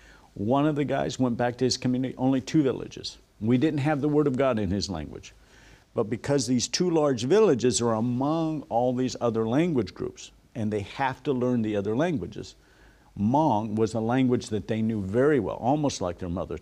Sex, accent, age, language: male, American, 50-69, English